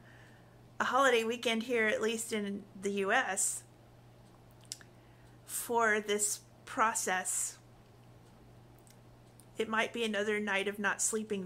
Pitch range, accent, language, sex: 190-225 Hz, American, English, female